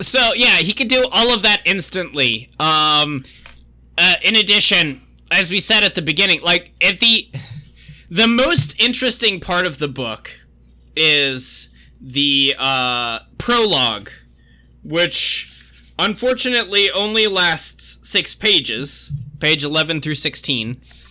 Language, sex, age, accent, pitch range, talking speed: English, male, 20-39, American, 115-175 Hz, 120 wpm